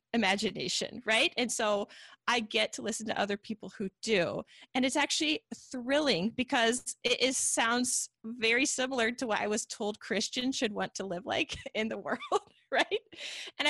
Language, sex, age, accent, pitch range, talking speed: English, female, 20-39, American, 210-275 Hz, 170 wpm